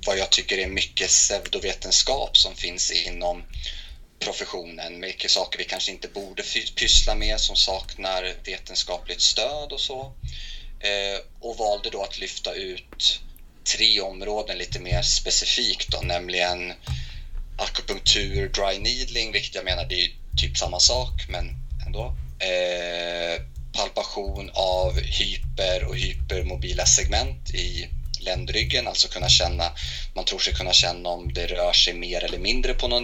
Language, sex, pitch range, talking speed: Swedish, male, 65-95 Hz, 140 wpm